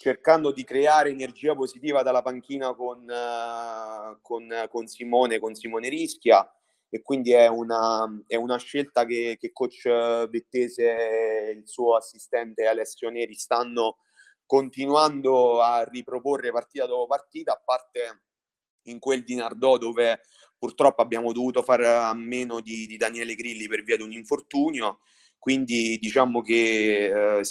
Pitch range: 115-130 Hz